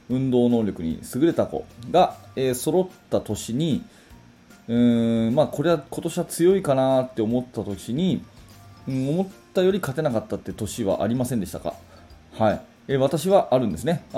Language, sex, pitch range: Japanese, male, 100-135 Hz